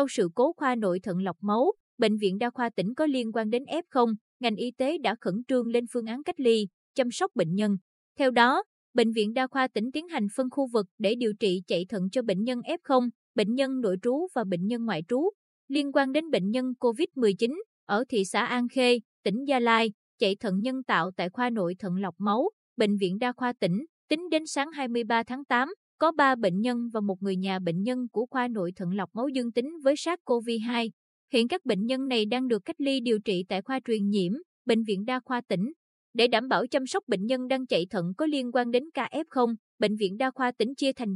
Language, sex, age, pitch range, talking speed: Vietnamese, female, 20-39, 205-265 Hz, 240 wpm